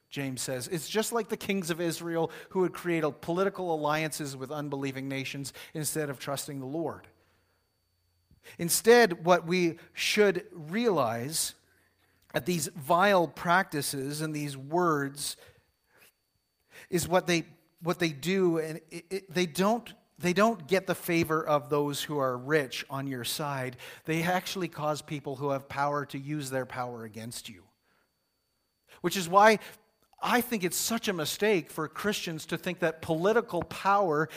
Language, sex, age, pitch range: English, male, 50-69, 150-200 Hz